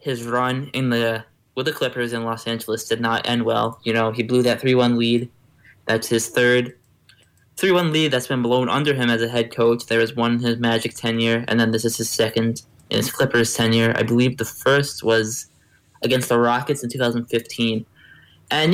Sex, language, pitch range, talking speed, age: male, English, 115-145 Hz, 200 wpm, 20-39